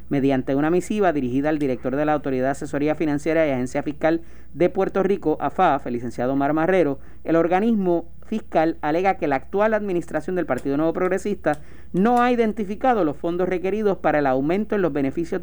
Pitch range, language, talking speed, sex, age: 145-195 Hz, Spanish, 185 wpm, male, 40-59